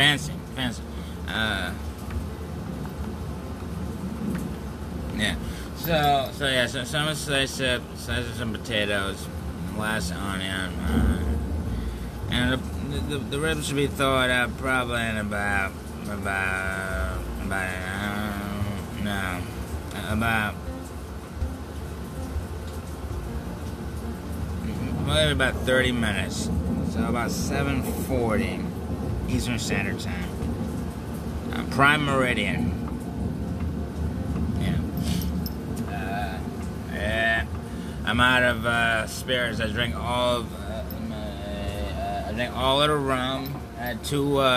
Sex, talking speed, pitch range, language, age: male, 105 wpm, 80-115 Hz, English, 20-39